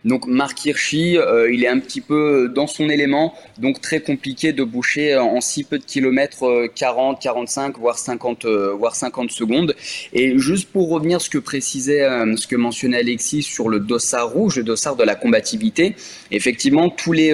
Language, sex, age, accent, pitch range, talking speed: French, male, 20-39, French, 120-160 Hz, 185 wpm